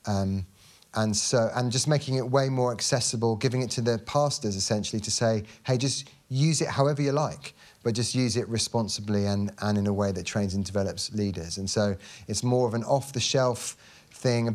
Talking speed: 210 wpm